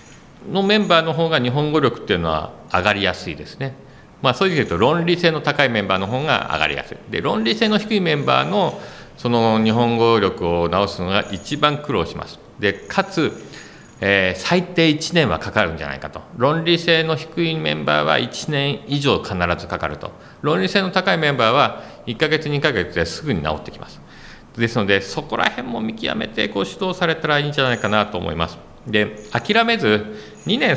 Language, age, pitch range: Japanese, 50-69, 85-140 Hz